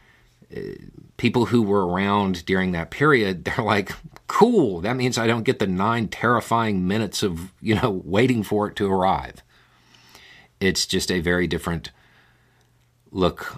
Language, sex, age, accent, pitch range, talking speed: English, male, 50-69, American, 85-120 Hz, 145 wpm